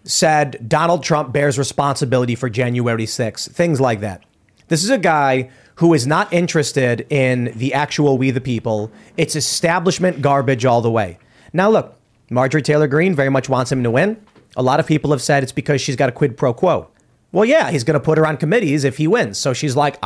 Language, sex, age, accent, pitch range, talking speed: English, male, 30-49, American, 125-165 Hz, 210 wpm